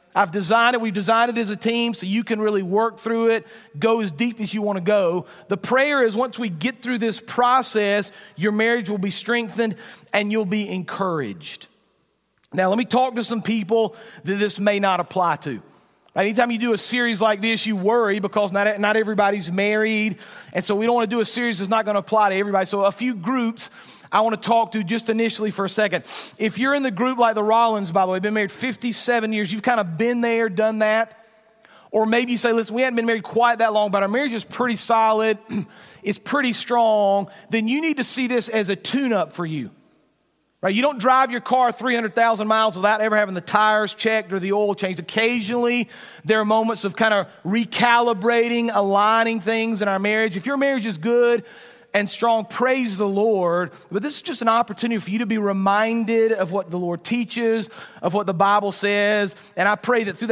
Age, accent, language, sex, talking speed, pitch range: 40-59, American, English, male, 220 wpm, 200-230 Hz